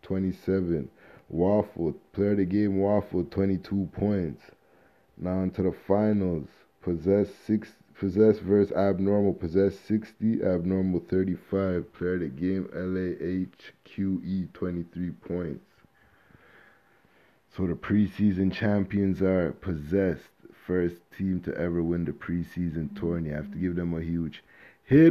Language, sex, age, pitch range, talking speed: English, male, 20-39, 95-110 Hz, 125 wpm